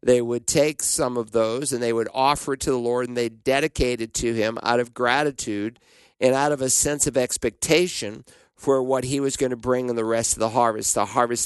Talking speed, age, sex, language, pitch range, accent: 235 wpm, 50-69, male, English, 115-140 Hz, American